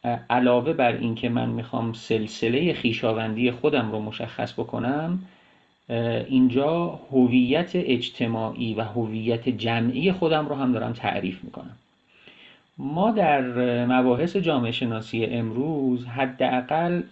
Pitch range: 120-150 Hz